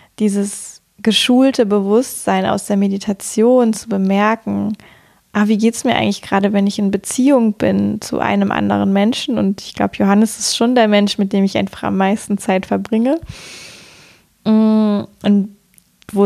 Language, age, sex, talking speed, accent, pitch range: German, 20-39, female, 155 wpm, German, 200-230 Hz